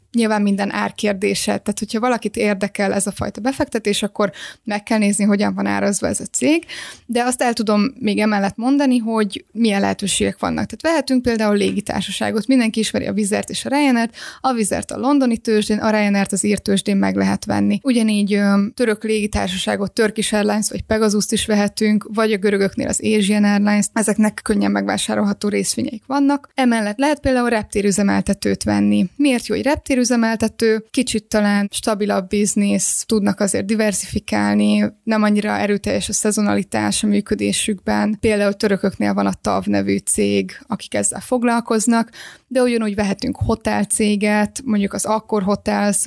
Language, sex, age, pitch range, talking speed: Hungarian, female, 20-39, 200-225 Hz, 155 wpm